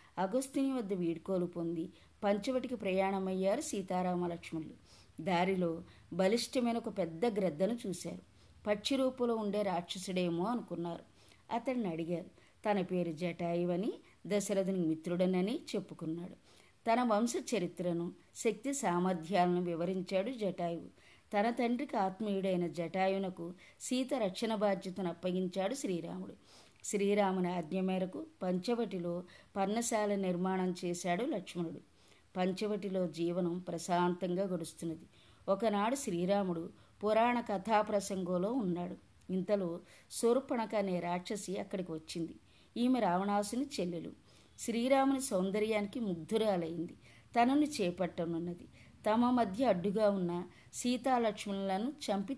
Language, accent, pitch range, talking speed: Telugu, native, 175-220 Hz, 90 wpm